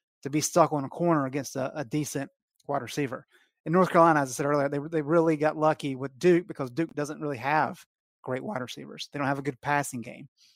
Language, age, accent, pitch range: English, 30-49, American, 140-165 Hz